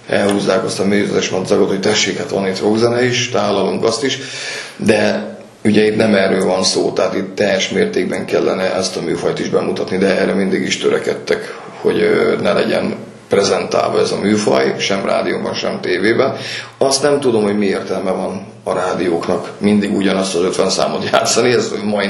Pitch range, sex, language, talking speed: 105-140 Hz, male, Hungarian, 175 wpm